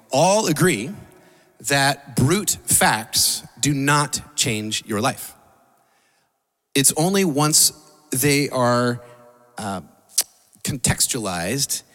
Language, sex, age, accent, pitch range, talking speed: English, male, 30-49, American, 110-150 Hz, 85 wpm